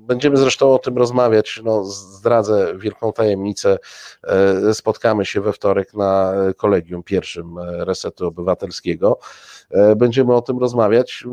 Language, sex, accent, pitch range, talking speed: Polish, male, native, 110-135 Hz, 115 wpm